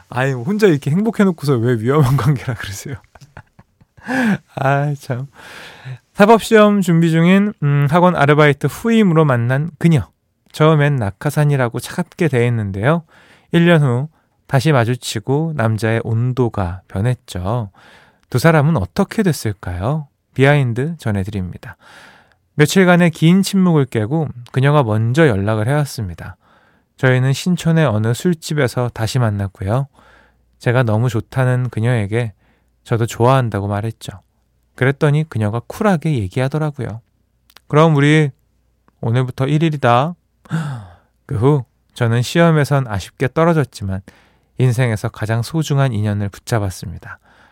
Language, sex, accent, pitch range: Korean, male, native, 115-155 Hz